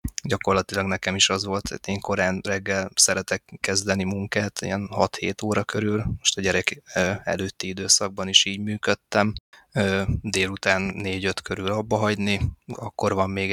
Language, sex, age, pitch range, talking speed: Hungarian, male, 20-39, 95-105 Hz, 140 wpm